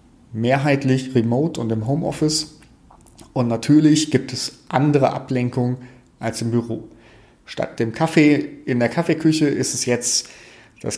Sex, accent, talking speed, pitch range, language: male, German, 130 wpm, 115-135 Hz, German